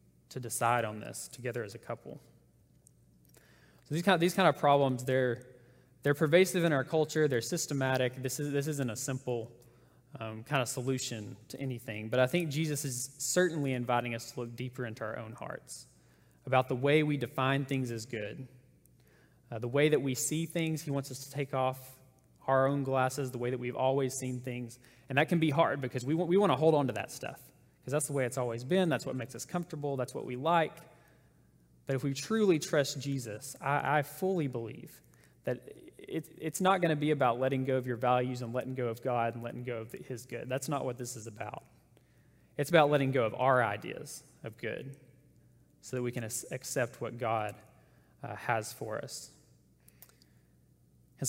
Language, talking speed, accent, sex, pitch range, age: English, 200 wpm, American, male, 120-145 Hz, 20-39